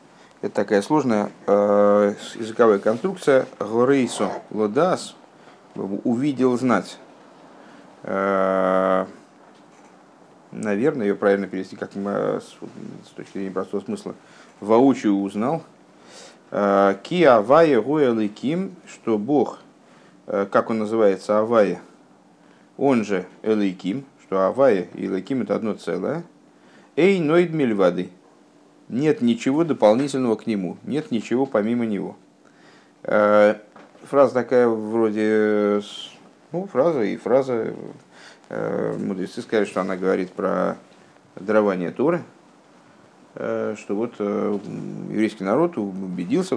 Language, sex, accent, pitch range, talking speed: Russian, male, native, 100-115 Hz, 95 wpm